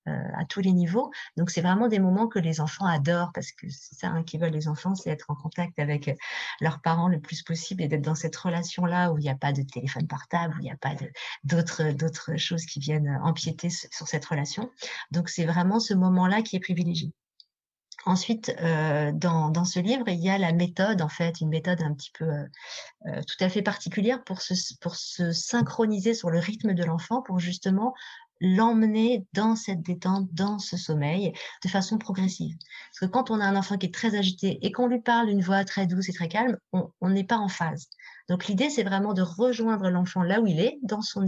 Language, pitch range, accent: French, 165-200 Hz, French